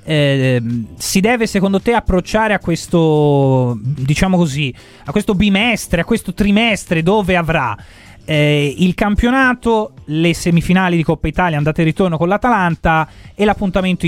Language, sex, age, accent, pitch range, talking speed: Italian, male, 30-49, native, 155-205 Hz, 140 wpm